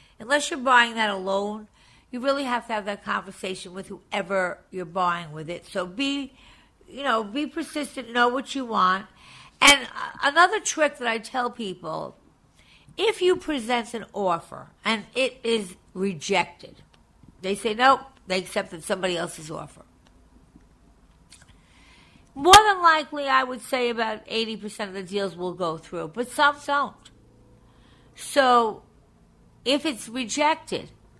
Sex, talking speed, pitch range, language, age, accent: female, 140 wpm, 190-250 Hz, English, 60-79, American